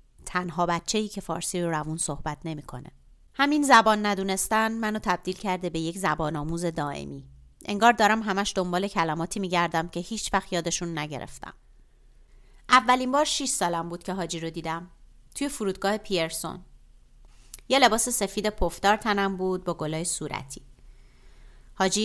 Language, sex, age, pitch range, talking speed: Persian, female, 30-49, 155-210 Hz, 140 wpm